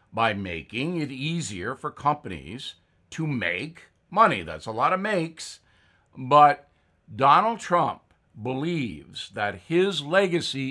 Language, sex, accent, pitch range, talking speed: English, male, American, 105-165 Hz, 120 wpm